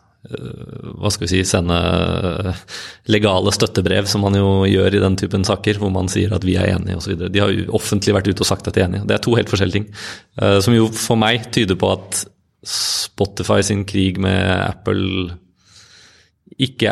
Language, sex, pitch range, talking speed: English, male, 95-105 Hz, 205 wpm